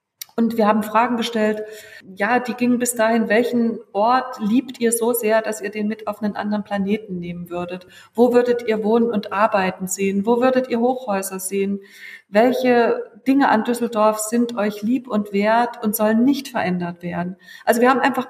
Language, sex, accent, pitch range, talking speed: German, female, German, 210-240 Hz, 185 wpm